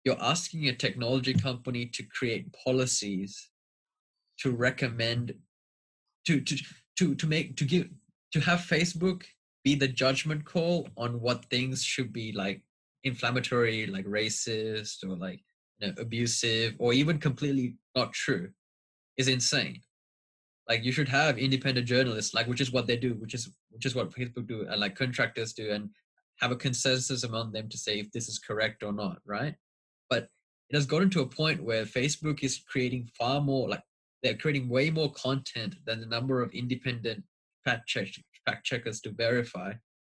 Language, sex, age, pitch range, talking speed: English, male, 20-39, 115-140 Hz, 170 wpm